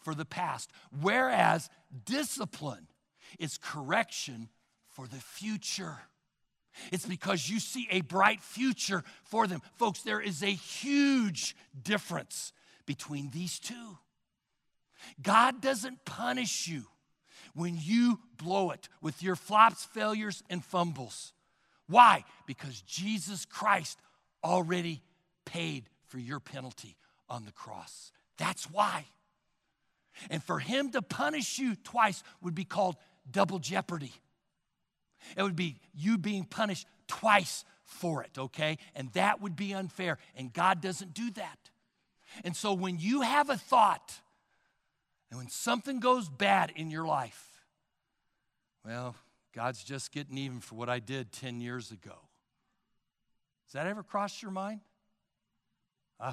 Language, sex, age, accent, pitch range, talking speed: English, male, 60-79, American, 145-210 Hz, 130 wpm